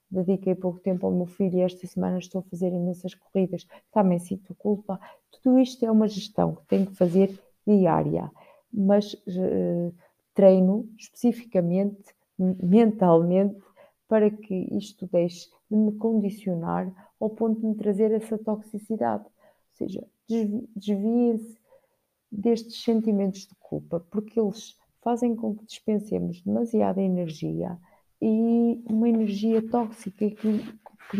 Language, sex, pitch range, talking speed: Portuguese, female, 185-225 Hz, 125 wpm